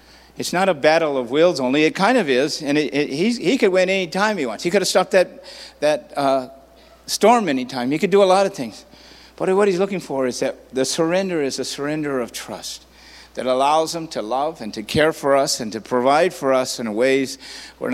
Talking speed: 240 wpm